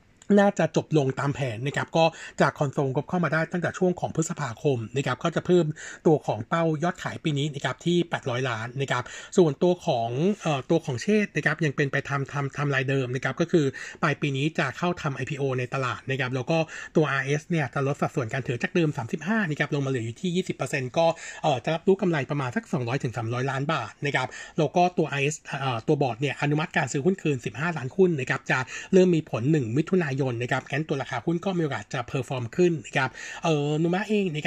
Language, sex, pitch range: Thai, male, 135-170 Hz